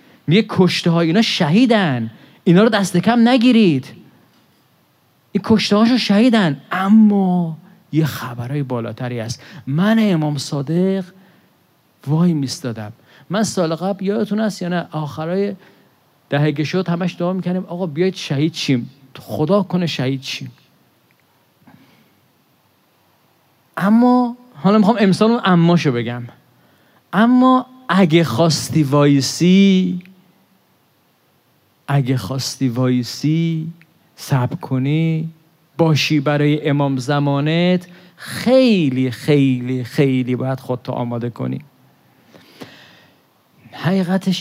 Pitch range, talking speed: 135-185 Hz, 95 wpm